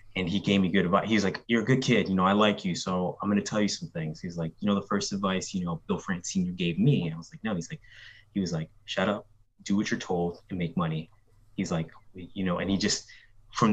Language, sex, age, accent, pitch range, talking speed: English, male, 20-39, American, 95-120 Hz, 290 wpm